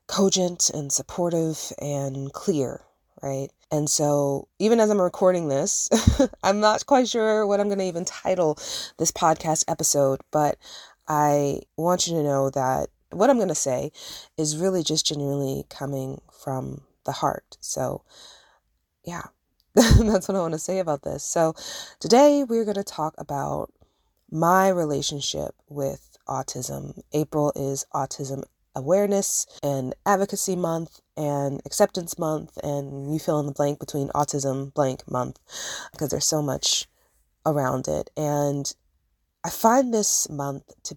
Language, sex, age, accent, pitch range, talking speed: English, female, 20-39, American, 135-175 Hz, 145 wpm